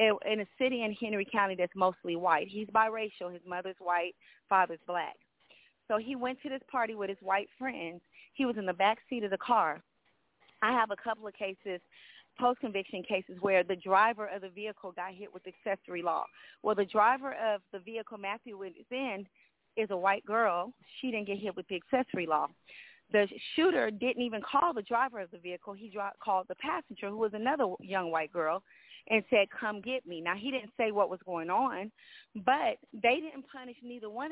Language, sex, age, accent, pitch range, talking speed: English, female, 30-49, American, 195-240 Hz, 200 wpm